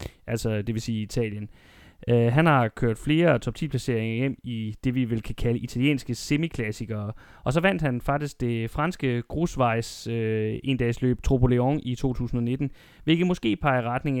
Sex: male